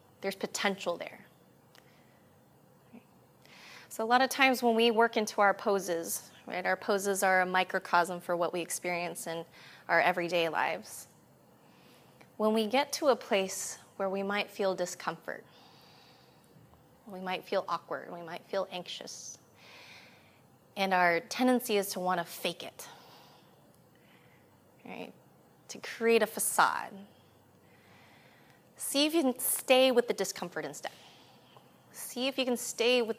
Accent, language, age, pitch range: American, English, 20-39, 180-235 Hz